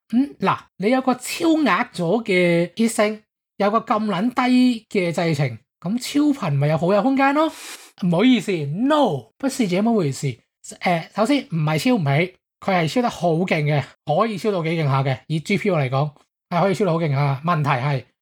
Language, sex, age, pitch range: English, male, 20-39, 150-210 Hz